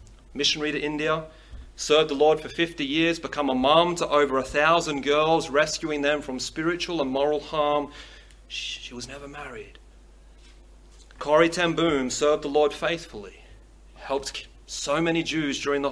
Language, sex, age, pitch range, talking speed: English, male, 30-49, 140-185 Hz, 150 wpm